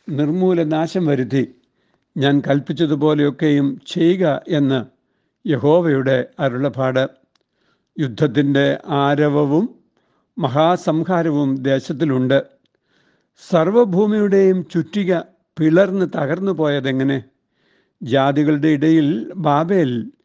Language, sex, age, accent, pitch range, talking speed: Malayalam, male, 60-79, native, 140-170 Hz, 60 wpm